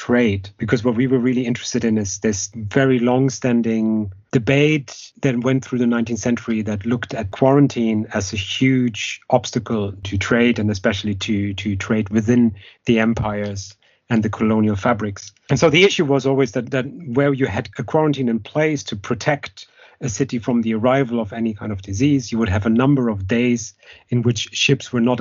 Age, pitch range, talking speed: 30-49, 105-125 Hz, 190 wpm